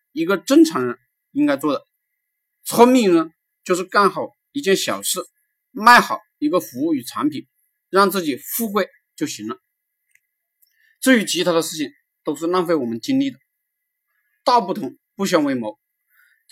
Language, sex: Chinese, male